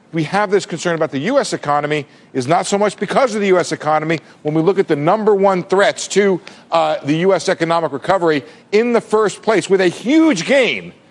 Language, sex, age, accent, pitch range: Korean, male, 50-69, American, 160-215 Hz